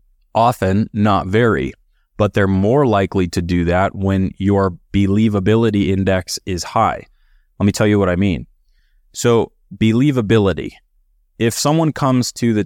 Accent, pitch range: American, 95-115 Hz